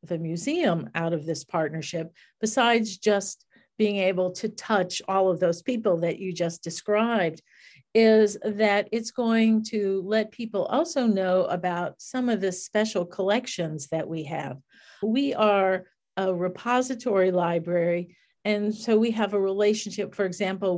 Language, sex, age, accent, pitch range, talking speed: English, female, 50-69, American, 180-215 Hz, 145 wpm